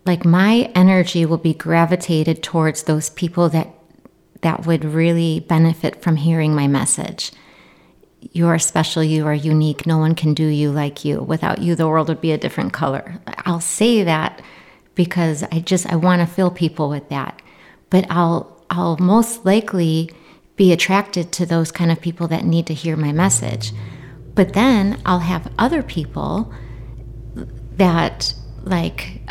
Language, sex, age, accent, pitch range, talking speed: English, female, 30-49, American, 150-180 Hz, 160 wpm